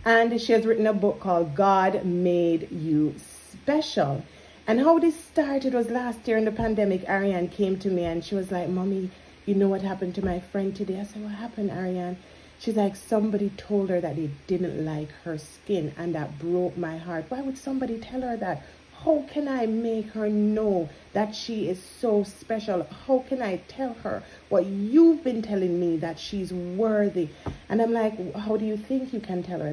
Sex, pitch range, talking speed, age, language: female, 165-215 Hz, 200 wpm, 40-59, English